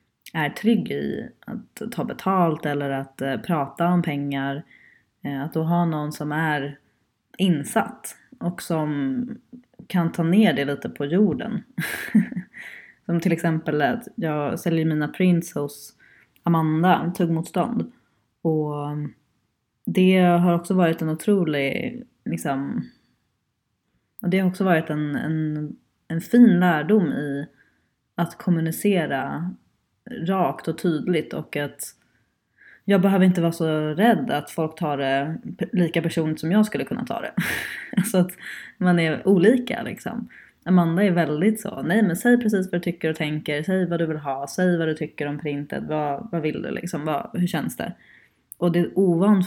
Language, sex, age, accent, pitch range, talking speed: Swedish, female, 20-39, native, 150-185 Hz, 155 wpm